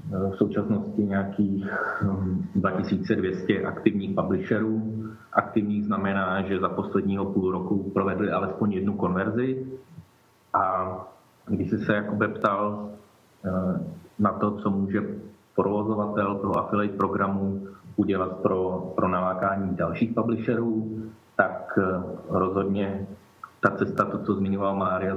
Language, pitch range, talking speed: Czech, 95-105 Hz, 105 wpm